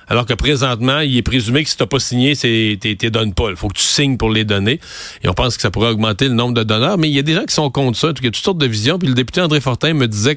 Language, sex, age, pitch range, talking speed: French, male, 40-59, 110-140 Hz, 345 wpm